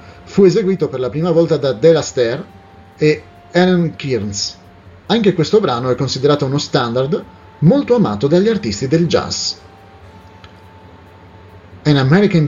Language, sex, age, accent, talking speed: Italian, male, 30-49, native, 130 wpm